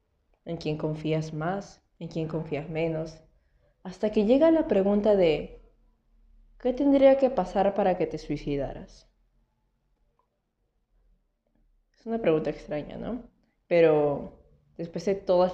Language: Spanish